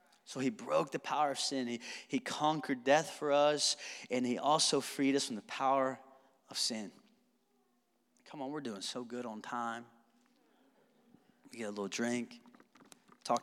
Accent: American